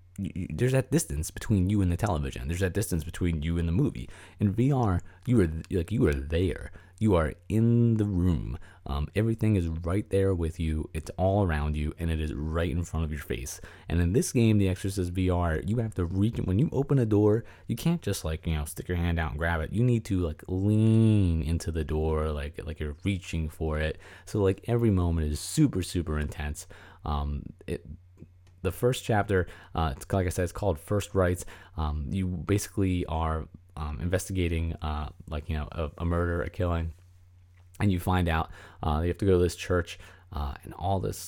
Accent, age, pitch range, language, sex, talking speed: American, 30-49, 80-105 Hz, English, male, 210 wpm